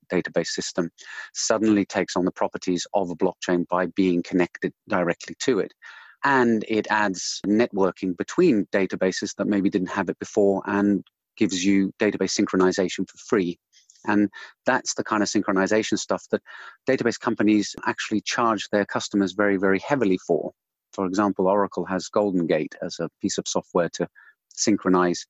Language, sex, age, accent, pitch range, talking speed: English, male, 40-59, British, 95-105 Hz, 155 wpm